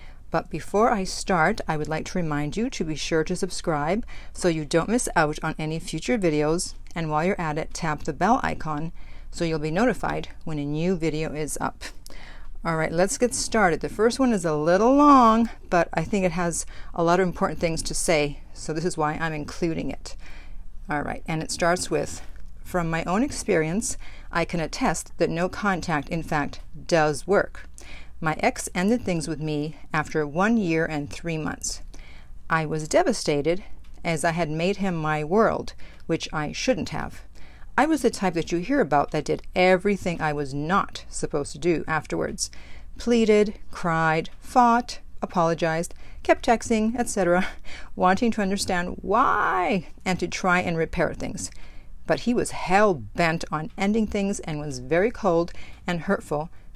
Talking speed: 180 wpm